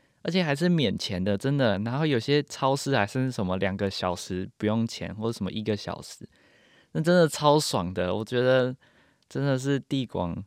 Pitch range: 95-125 Hz